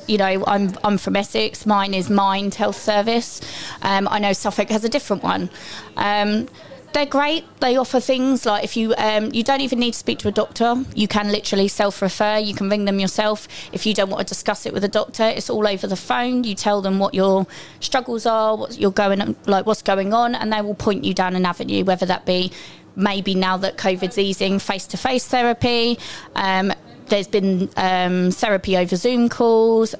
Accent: British